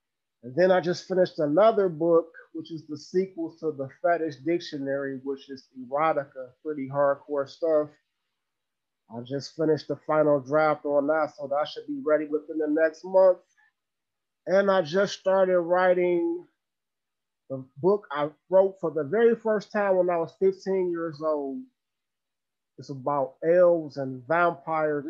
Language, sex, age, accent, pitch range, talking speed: English, male, 30-49, American, 140-175 Hz, 150 wpm